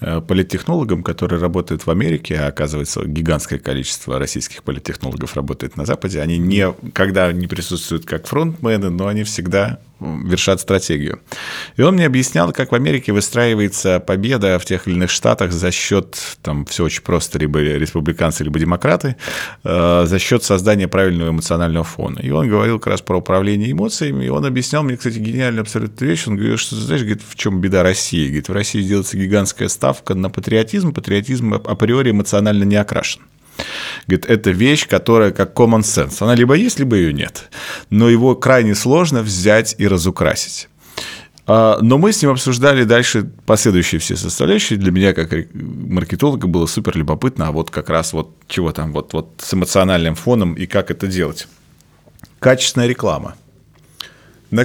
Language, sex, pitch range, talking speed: Russian, male, 85-115 Hz, 165 wpm